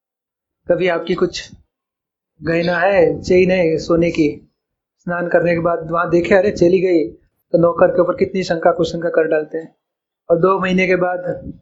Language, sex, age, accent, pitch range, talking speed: Hindi, male, 30-49, native, 175-200 Hz, 170 wpm